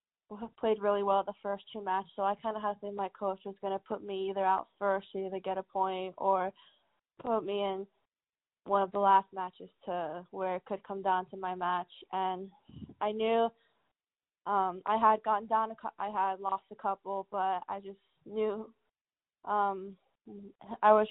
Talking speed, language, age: 195 wpm, English, 10-29